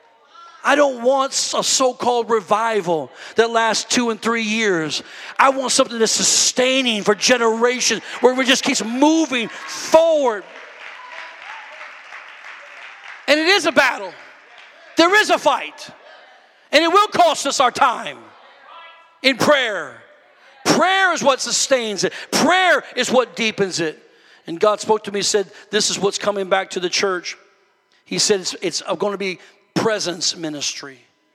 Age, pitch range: 50-69, 200-275 Hz